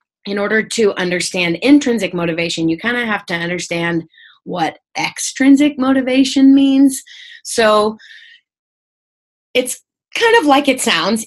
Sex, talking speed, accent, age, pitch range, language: female, 120 wpm, American, 30-49, 180-255 Hz, English